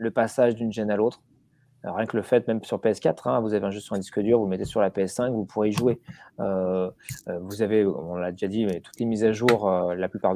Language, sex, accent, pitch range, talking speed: French, male, French, 100-130 Hz, 270 wpm